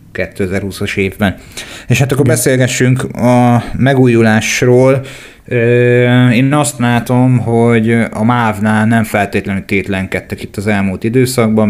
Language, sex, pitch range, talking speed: Hungarian, male, 100-115 Hz, 110 wpm